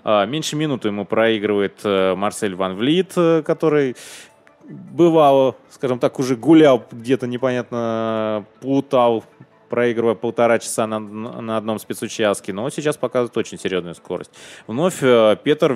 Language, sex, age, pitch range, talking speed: Russian, male, 20-39, 95-125 Hz, 120 wpm